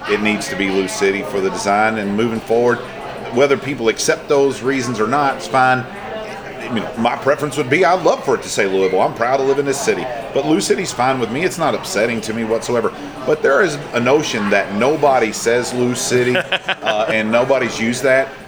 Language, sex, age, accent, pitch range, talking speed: English, male, 40-59, American, 110-140 Hz, 215 wpm